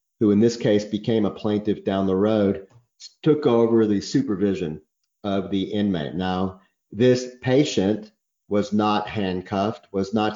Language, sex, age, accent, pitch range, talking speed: English, male, 50-69, American, 95-115 Hz, 145 wpm